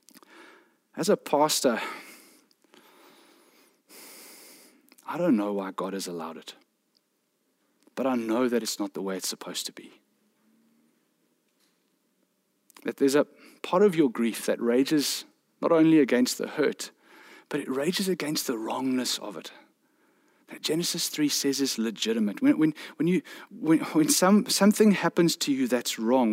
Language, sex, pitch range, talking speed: English, male, 135-210 Hz, 145 wpm